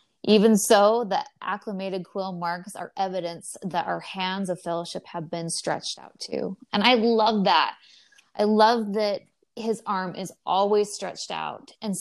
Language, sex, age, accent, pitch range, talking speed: English, female, 20-39, American, 175-210 Hz, 160 wpm